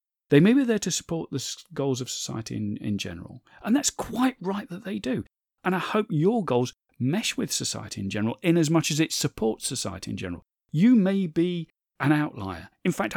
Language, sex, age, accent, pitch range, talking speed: English, male, 40-59, British, 110-165 Hz, 210 wpm